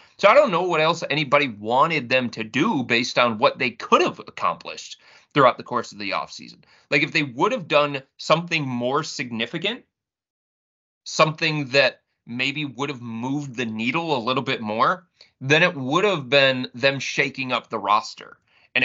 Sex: male